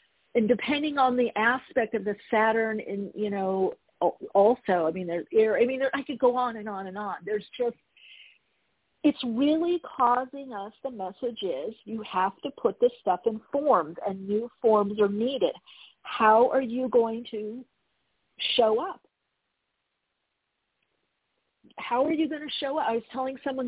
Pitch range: 205-260 Hz